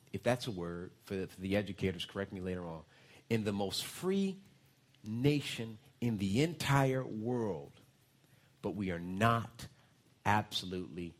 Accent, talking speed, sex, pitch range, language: American, 135 wpm, male, 100-135 Hz, English